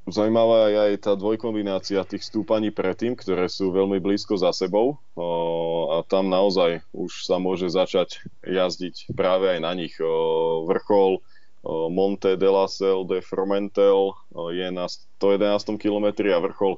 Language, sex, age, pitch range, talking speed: Slovak, male, 20-39, 90-105 Hz, 145 wpm